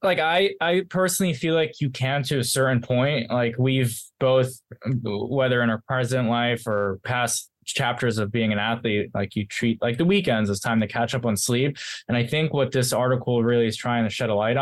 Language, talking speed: English, 220 wpm